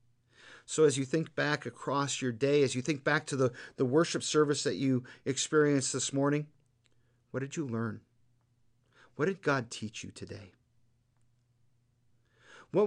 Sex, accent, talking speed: male, American, 155 wpm